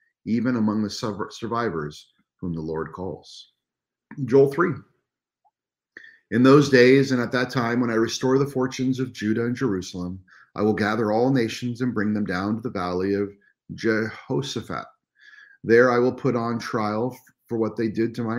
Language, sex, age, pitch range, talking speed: English, male, 40-59, 95-130 Hz, 170 wpm